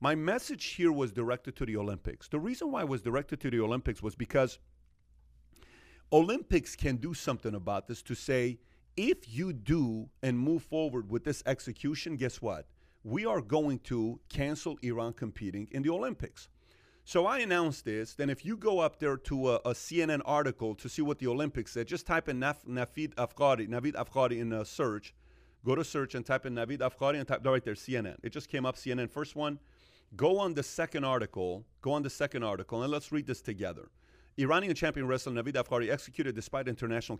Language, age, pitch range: English, 40-59, 115-150 Hz